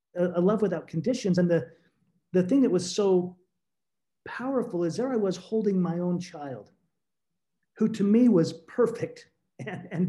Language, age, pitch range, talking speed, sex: English, 40-59, 165-200 Hz, 160 wpm, male